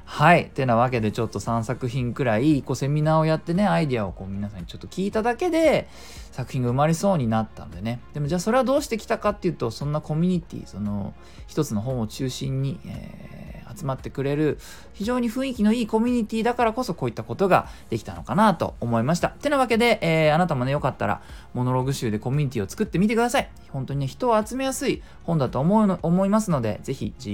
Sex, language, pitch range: male, Japanese, 115-185 Hz